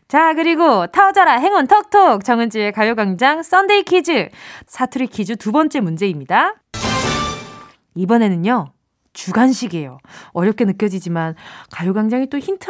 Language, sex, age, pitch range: Korean, female, 20-39, 215-335 Hz